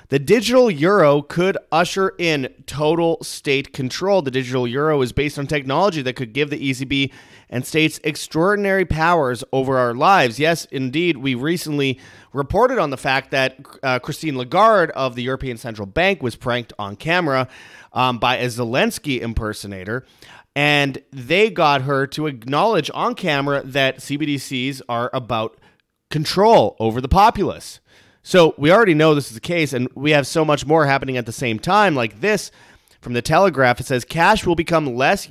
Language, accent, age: English, American, 30-49